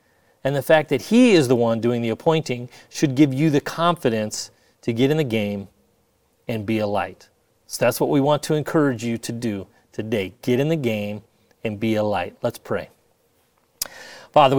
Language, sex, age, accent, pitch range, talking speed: English, male, 30-49, American, 115-145 Hz, 195 wpm